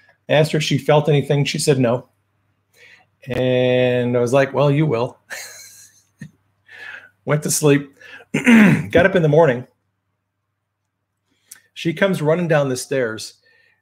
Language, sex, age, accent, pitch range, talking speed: English, male, 40-59, American, 120-160 Hz, 130 wpm